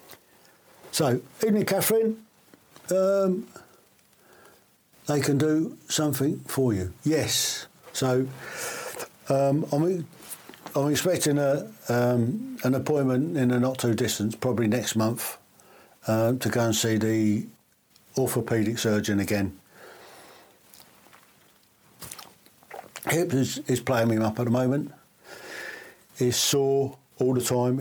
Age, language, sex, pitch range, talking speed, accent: 60-79, English, male, 110-135 Hz, 105 wpm, British